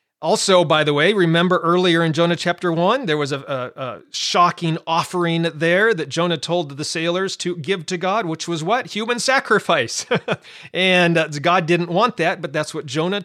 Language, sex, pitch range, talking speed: English, male, 120-175 Hz, 185 wpm